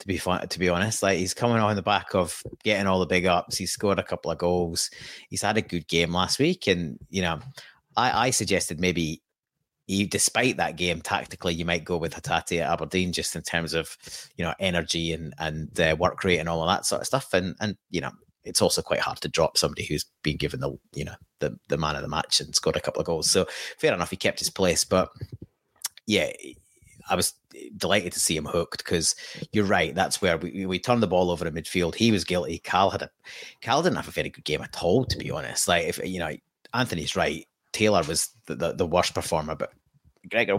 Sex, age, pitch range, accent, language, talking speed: male, 30-49, 85-100 Hz, British, English, 235 wpm